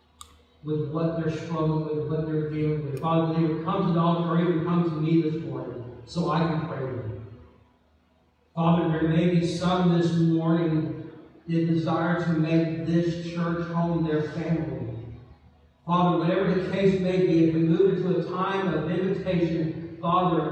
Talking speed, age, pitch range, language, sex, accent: 170 wpm, 50-69, 125-165 Hz, English, male, American